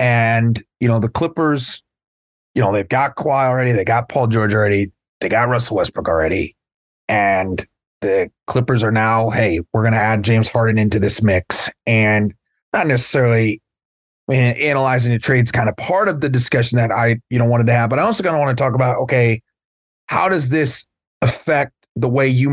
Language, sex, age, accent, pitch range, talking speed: English, male, 30-49, American, 115-145 Hz, 190 wpm